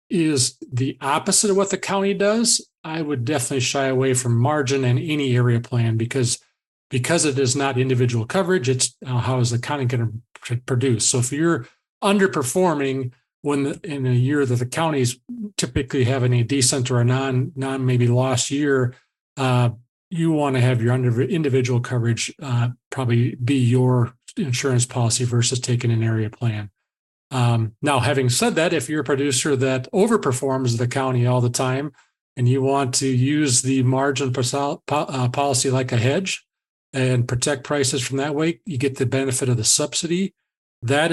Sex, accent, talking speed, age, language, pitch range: male, American, 170 wpm, 40-59, English, 125-150 Hz